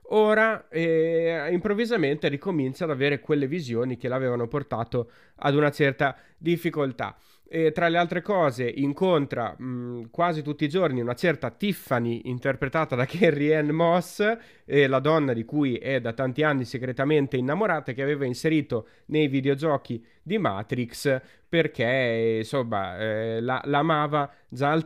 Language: Italian